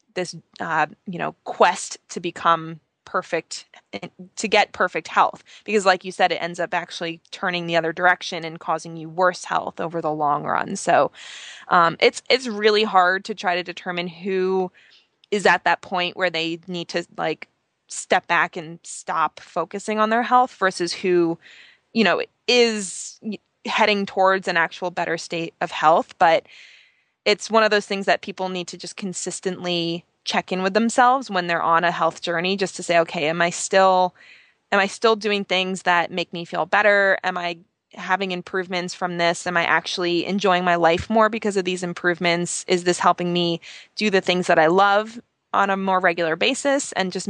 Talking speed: 185 wpm